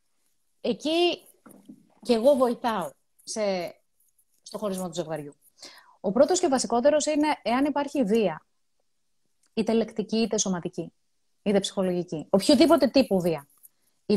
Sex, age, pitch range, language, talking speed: female, 30-49, 205-275 Hz, Greek, 120 wpm